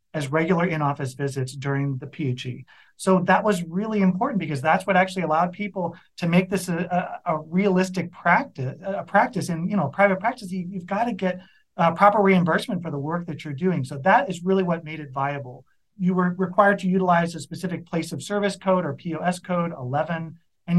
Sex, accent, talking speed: male, American, 205 wpm